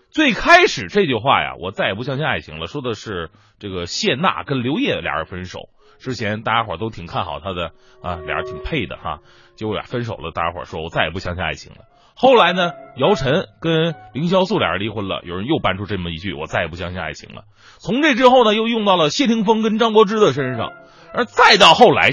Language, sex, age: Chinese, male, 30-49